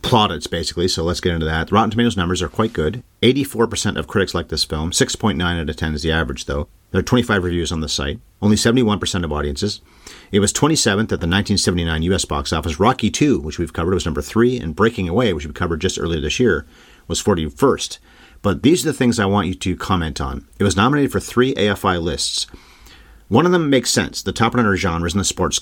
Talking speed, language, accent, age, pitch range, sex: 225 wpm, English, American, 40-59, 80-105 Hz, male